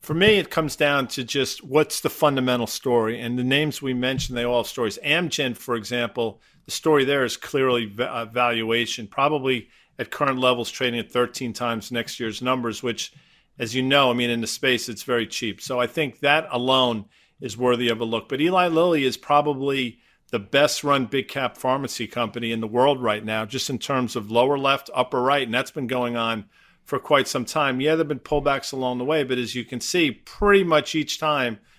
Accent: American